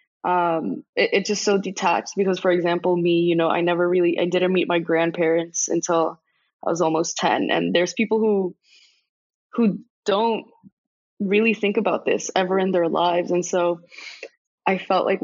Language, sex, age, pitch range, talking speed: English, female, 20-39, 170-195 Hz, 170 wpm